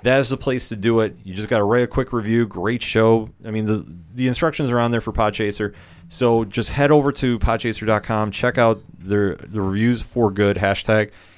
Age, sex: 30-49, male